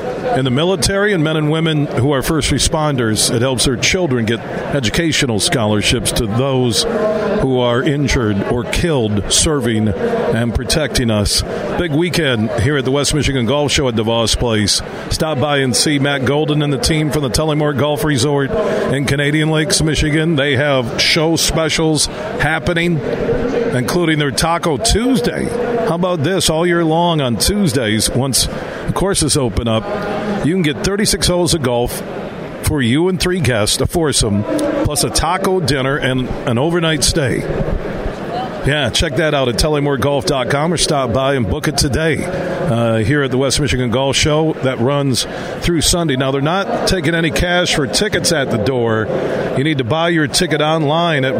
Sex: male